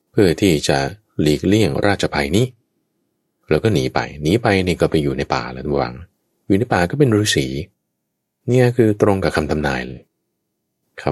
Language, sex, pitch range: Thai, male, 75-115 Hz